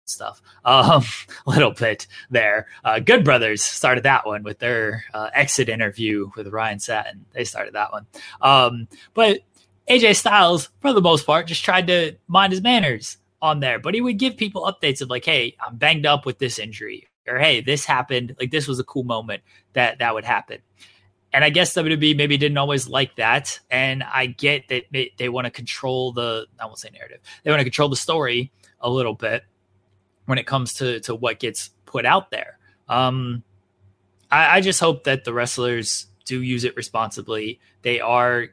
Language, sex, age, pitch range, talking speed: English, male, 20-39, 110-140 Hz, 190 wpm